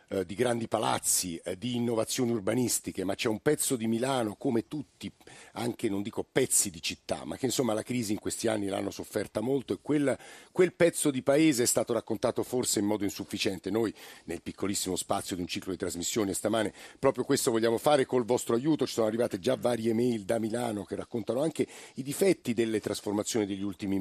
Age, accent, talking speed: 50-69, native, 195 wpm